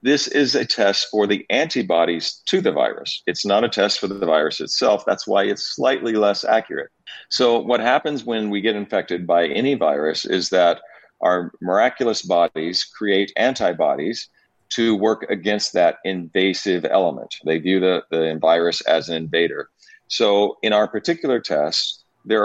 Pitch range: 85-115 Hz